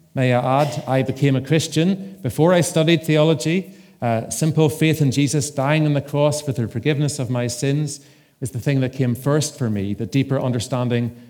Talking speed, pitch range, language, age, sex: 195 wpm, 115-150 Hz, English, 40-59, male